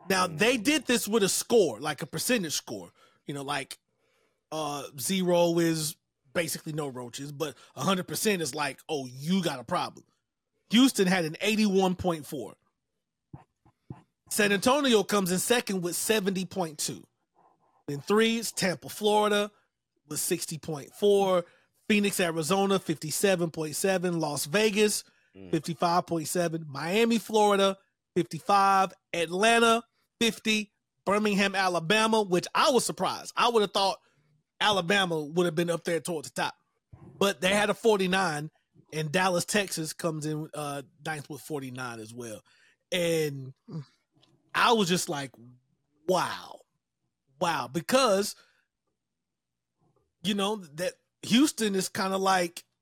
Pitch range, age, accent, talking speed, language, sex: 155-205 Hz, 30-49, American, 120 wpm, English, male